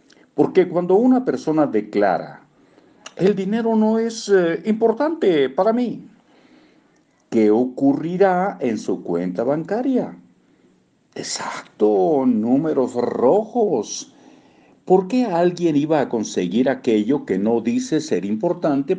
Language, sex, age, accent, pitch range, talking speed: Spanish, male, 50-69, Mexican, 125-205 Hz, 105 wpm